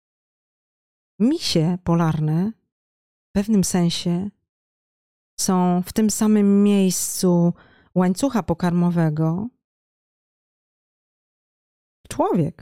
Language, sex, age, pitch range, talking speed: Polish, female, 40-59, 165-200 Hz, 60 wpm